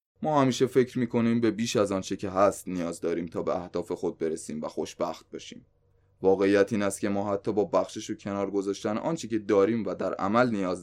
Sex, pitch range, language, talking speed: male, 95-115 Hz, Persian, 215 wpm